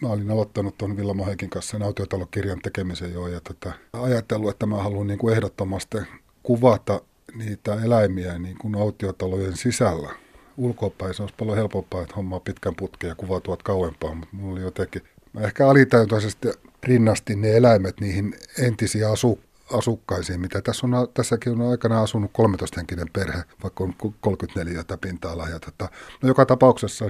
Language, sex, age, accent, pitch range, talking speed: Finnish, male, 30-49, native, 95-115 Hz, 155 wpm